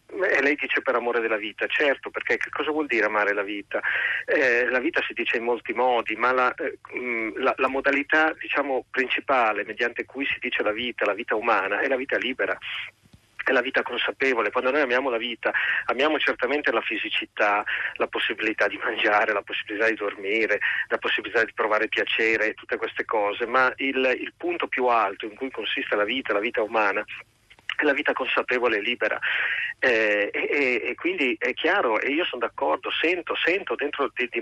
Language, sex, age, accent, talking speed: Italian, male, 40-59, native, 185 wpm